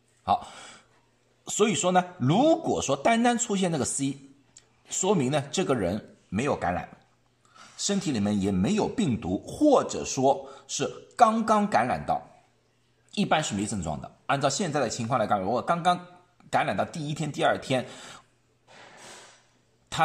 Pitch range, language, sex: 115-180 Hz, Chinese, male